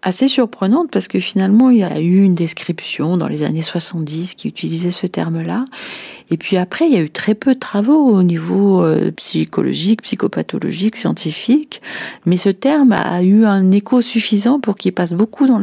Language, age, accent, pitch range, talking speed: French, 40-59, French, 165-205 Hz, 185 wpm